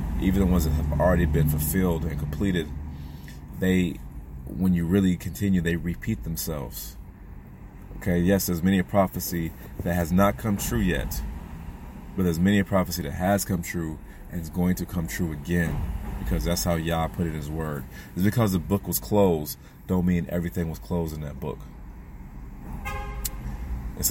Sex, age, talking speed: male, 30-49, 170 wpm